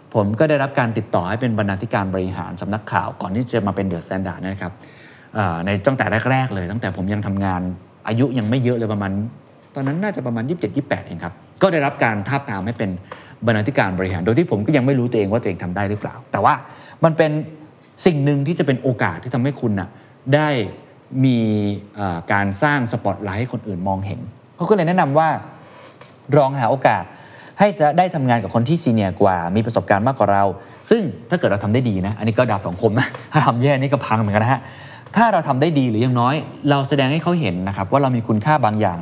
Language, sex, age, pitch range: Thai, male, 20-39, 100-135 Hz